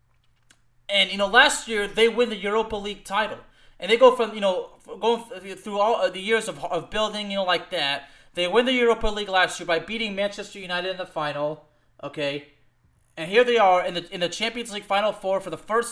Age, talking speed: 20-39, 225 wpm